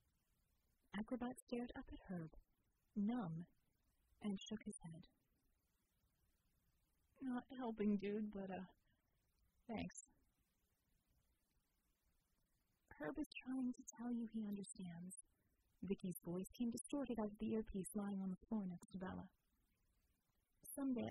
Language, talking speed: English, 115 wpm